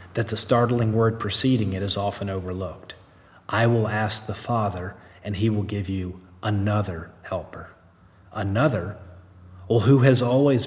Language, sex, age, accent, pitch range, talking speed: English, male, 40-59, American, 95-115 Hz, 145 wpm